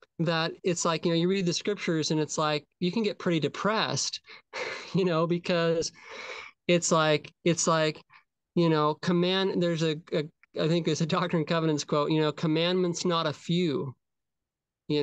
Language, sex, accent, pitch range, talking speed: English, male, American, 155-185 Hz, 180 wpm